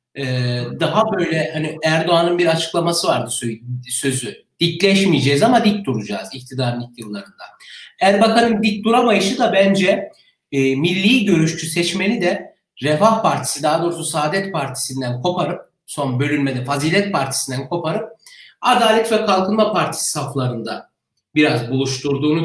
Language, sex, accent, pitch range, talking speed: Turkish, male, native, 150-210 Hz, 120 wpm